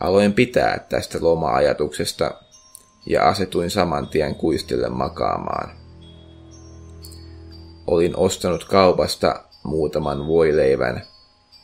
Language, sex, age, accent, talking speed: Finnish, male, 30-49, native, 75 wpm